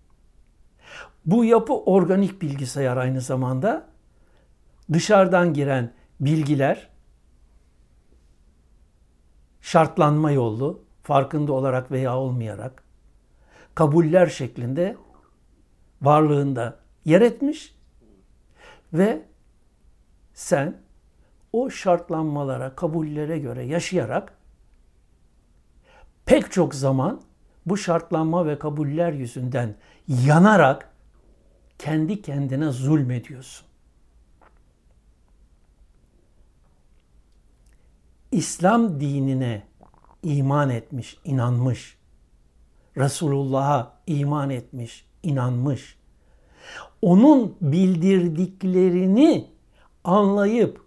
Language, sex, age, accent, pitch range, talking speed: Turkish, male, 60-79, native, 115-175 Hz, 60 wpm